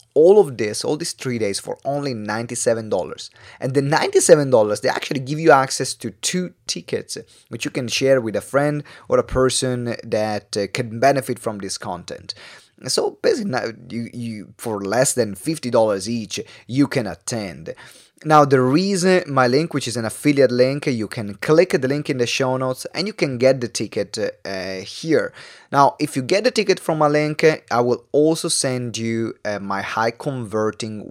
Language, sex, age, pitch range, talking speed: English, male, 30-49, 110-150 Hz, 180 wpm